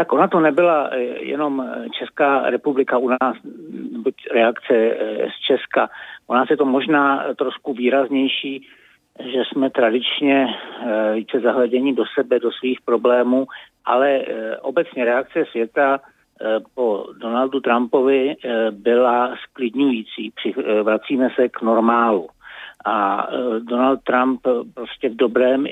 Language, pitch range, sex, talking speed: Czech, 115-135 Hz, male, 115 wpm